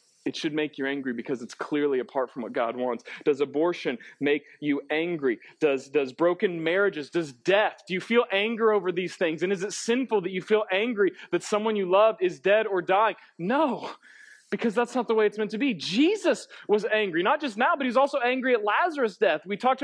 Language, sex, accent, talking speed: English, male, American, 220 wpm